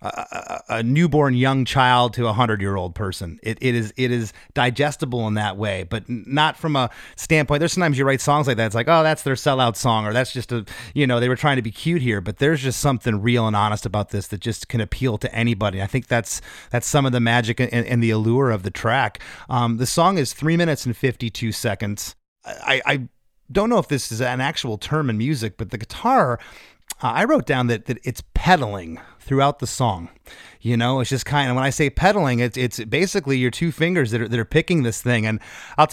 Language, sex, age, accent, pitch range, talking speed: English, male, 30-49, American, 115-145 Hz, 235 wpm